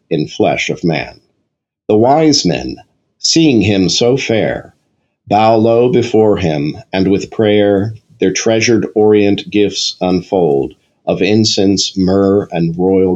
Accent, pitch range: American, 90-110 Hz